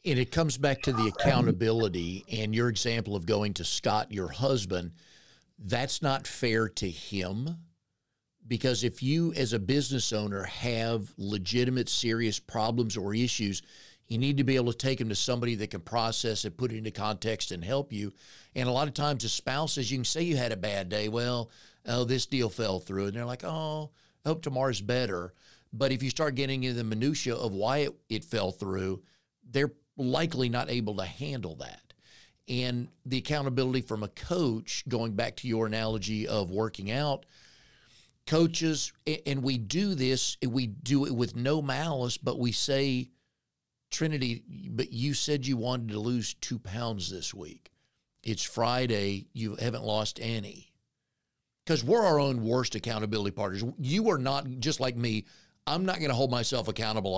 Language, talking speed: English, 180 wpm